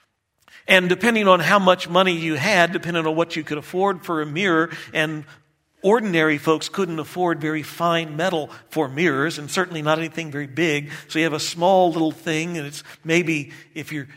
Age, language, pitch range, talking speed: 50-69, English, 155-210 Hz, 190 wpm